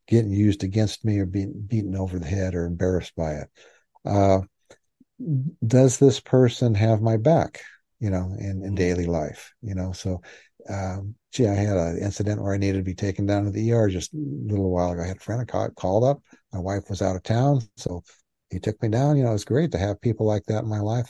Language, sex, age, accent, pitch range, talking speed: English, male, 60-79, American, 95-115 Hz, 230 wpm